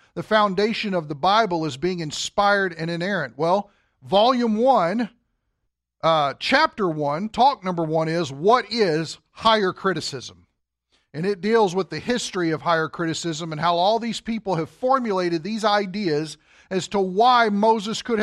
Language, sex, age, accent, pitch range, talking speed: English, male, 50-69, American, 160-205 Hz, 155 wpm